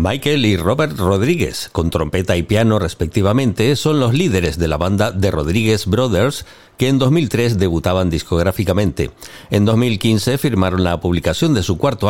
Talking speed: 155 wpm